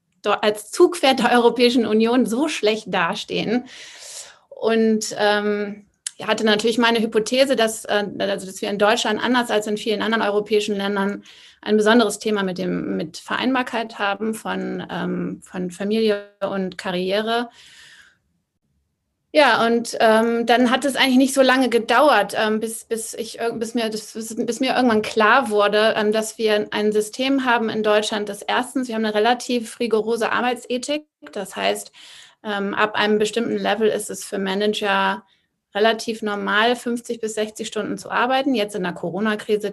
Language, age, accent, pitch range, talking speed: German, 30-49, German, 205-240 Hz, 160 wpm